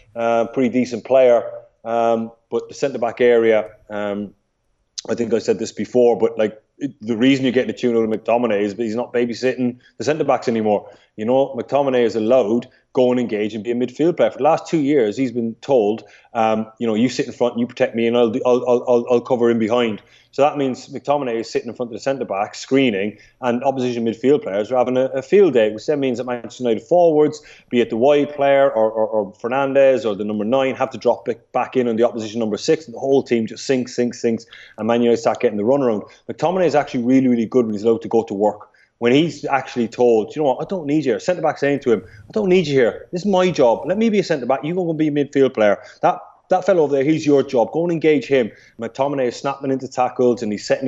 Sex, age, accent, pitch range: male, 30-49, British, 115-140 Hz